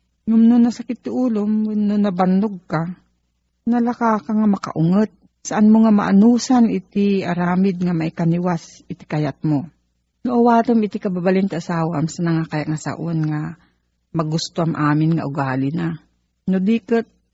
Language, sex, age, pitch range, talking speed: Filipino, female, 50-69, 160-210 Hz, 140 wpm